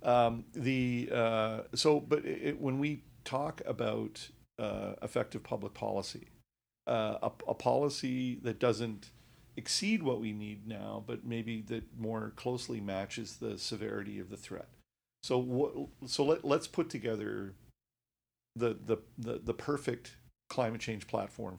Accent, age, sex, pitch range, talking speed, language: American, 50-69, male, 105-125 Hz, 145 wpm, English